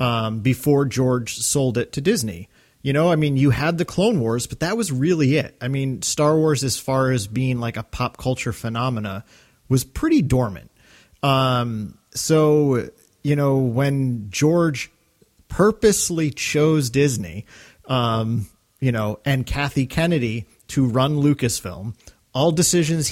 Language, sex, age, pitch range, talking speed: English, male, 40-59, 115-150 Hz, 150 wpm